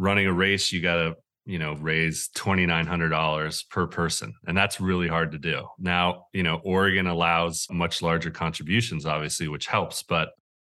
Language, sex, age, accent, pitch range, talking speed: English, male, 30-49, American, 85-100 Hz, 170 wpm